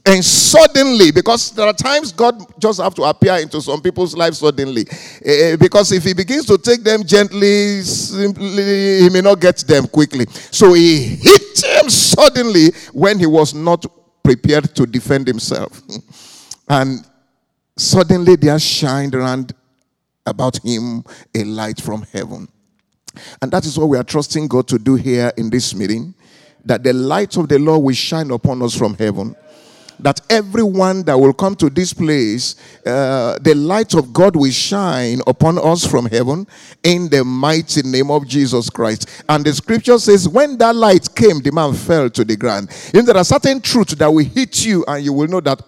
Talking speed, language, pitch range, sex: 180 wpm, English, 130-195 Hz, male